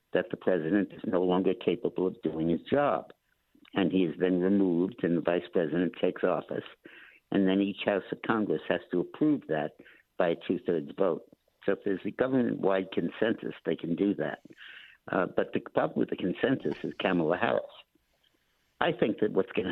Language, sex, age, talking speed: English, male, 60-79, 185 wpm